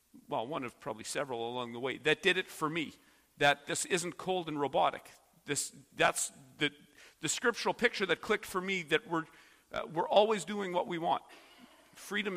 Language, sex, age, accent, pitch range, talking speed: English, male, 40-59, American, 140-185 Hz, 190 wpm